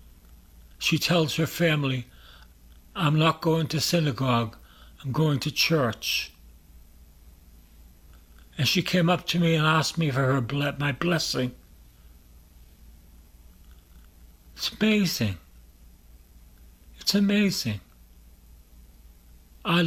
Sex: male